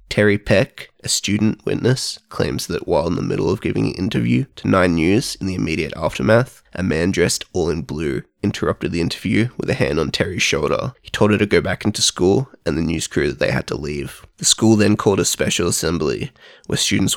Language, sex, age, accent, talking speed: English, male, 20-39, Australian, 220 wpm